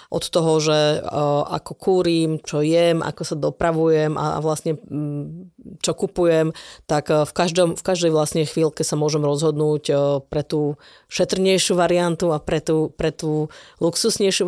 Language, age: Slovak, 30-49